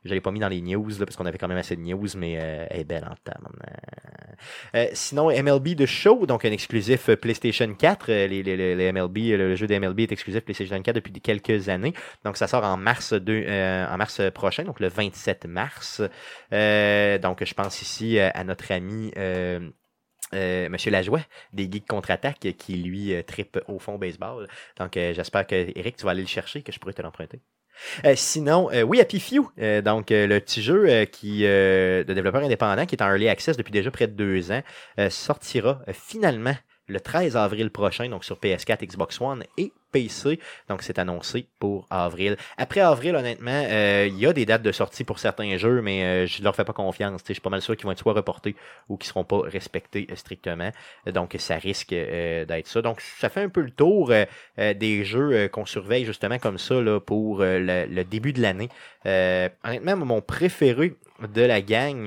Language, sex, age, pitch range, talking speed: French, male, 30-49, 95-115 Hz, 215 wpm